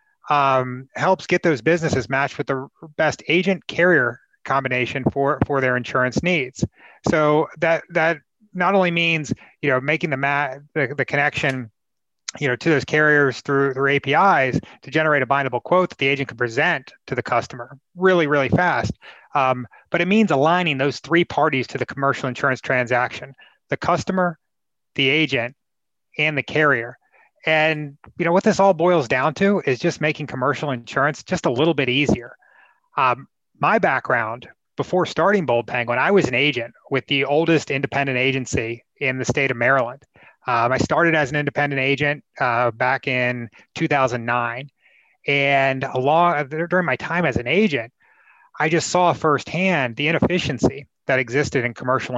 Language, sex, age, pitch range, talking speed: English, male, 30-49, 130-165 Hz, 165 wpm